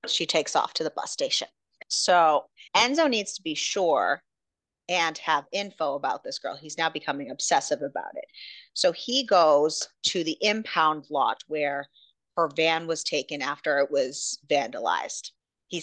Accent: American